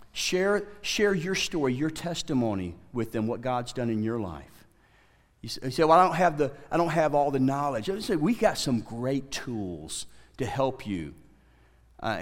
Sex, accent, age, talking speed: male, American, 50-69, 175 wpm